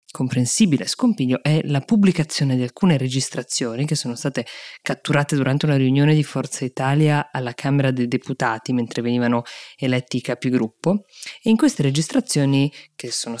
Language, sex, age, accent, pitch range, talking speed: Italian, female, 20-39, native, 130-170 Hz, 150 wpm